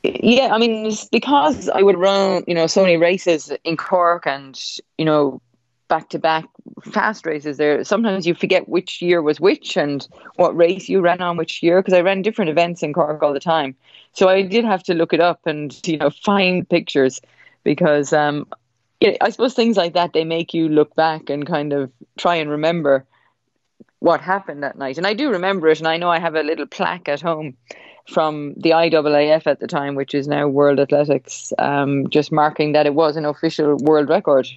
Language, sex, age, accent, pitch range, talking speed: English, female, 30-49, Irish, 145-185 Hz, 205 wpm